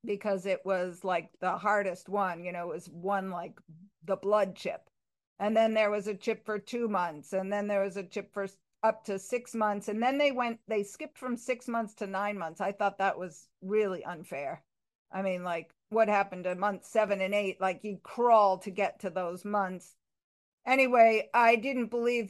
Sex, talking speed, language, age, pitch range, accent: female, 205 wpm, English, 50-69, 195-225 Hz, American